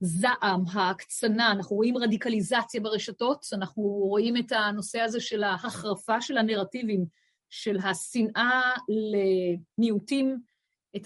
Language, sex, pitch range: Hebrew, female, 200-245 Hz